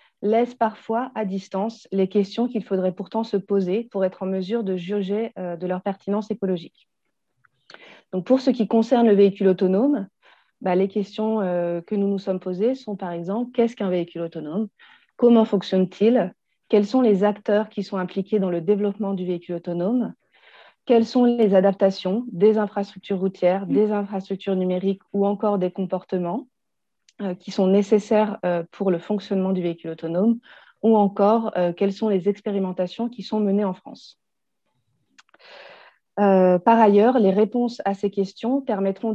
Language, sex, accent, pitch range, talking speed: French, female, French, 190-220 Hz, 155 wpm